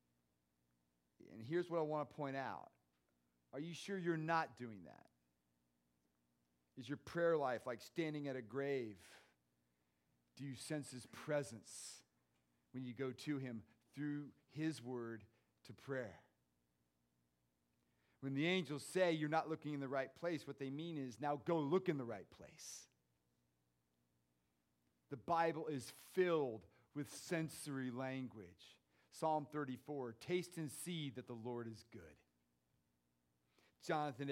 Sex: male